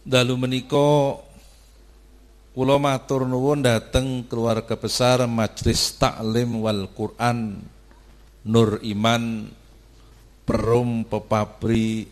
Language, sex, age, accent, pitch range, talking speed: Indonesian, male, 50-69, native, 110-135 Hz, 80 wpm